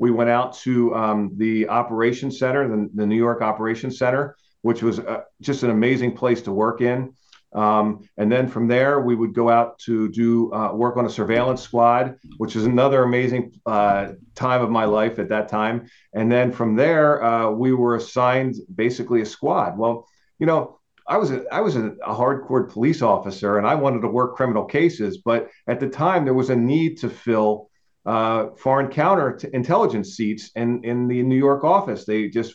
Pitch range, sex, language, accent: 110-125 Hz, male, English, American